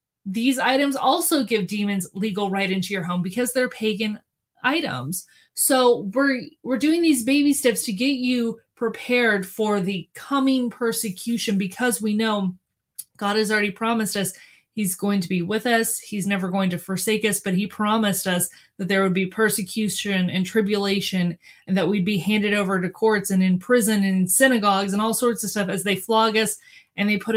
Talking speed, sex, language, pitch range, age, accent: 190 wpm, female, English, 185-225 Hz, 20-39, American